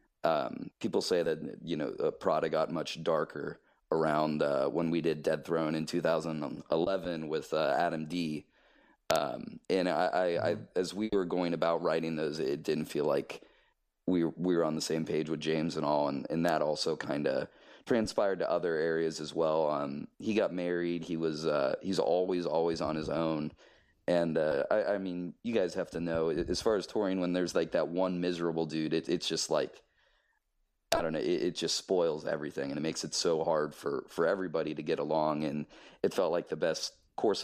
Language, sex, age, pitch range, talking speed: English, male, 30-49, 80-90 Hz, 205 wpm